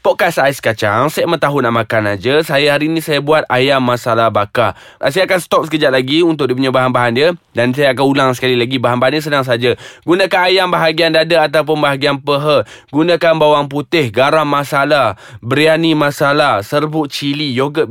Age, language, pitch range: 20-39, Malay, 130-170 Hz